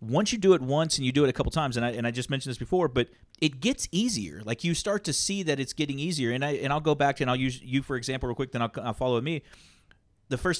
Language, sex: English, male